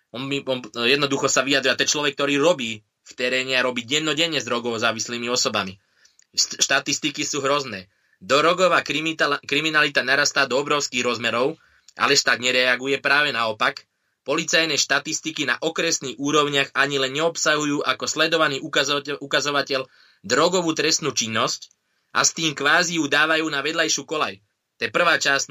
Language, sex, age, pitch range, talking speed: Slovak, male, 20-39, 125-155 Hz, 140 wpm